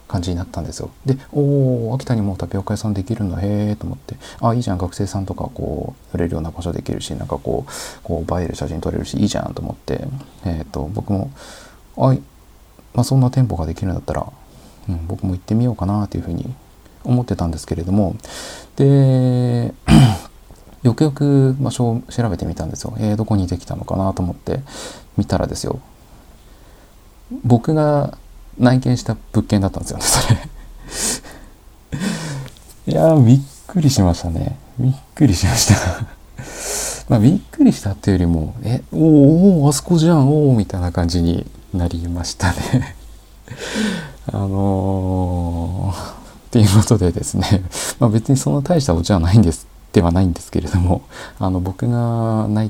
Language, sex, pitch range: Japanese, male, 90-125 Hz